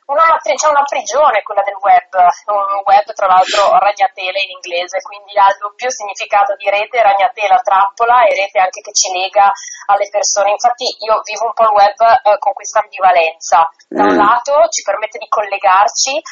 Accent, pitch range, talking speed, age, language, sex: native, 195-235 Hz, 180 wpm, 20-39, Italian, female